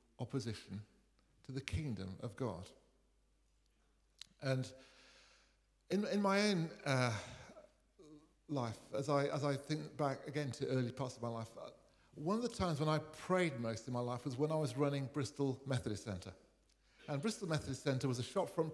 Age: 50-69